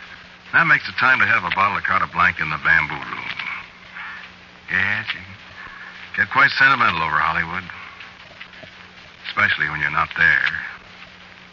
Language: English